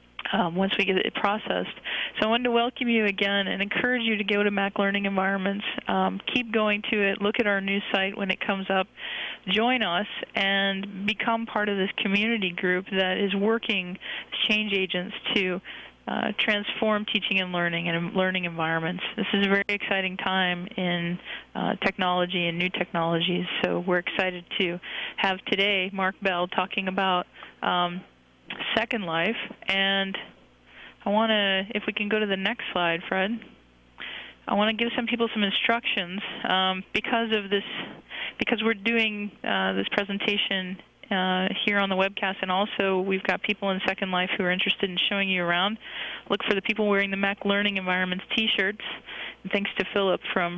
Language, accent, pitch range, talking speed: English, American, 185-215 Hz, 180 wpm